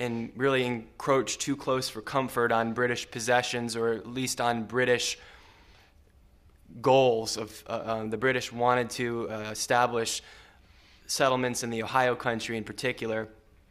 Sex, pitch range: male, 115-130 Hz